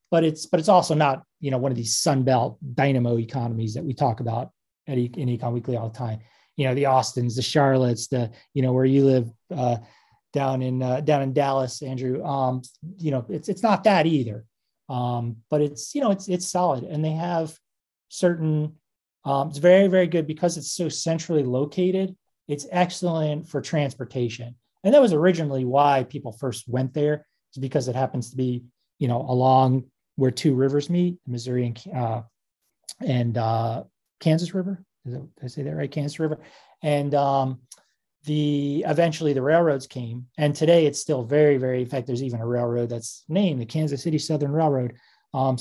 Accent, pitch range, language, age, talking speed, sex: American, 125-155 Hz, English, 30-49, 190 wpm, male